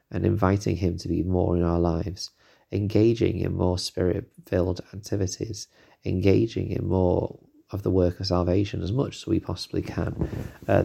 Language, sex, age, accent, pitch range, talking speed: English, male, 30-49, British, 85-105 Hz, 160 wpm